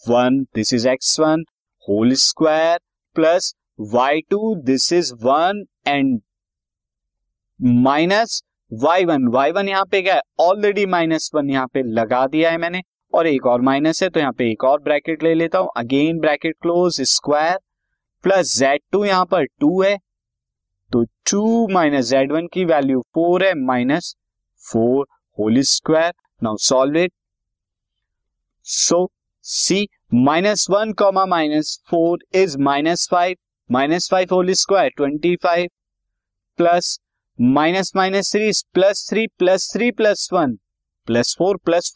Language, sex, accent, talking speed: Hindi, male, native, 115 wpm